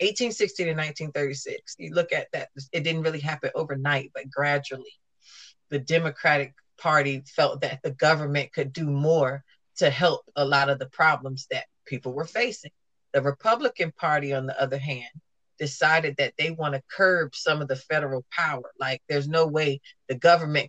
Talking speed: 170 wpm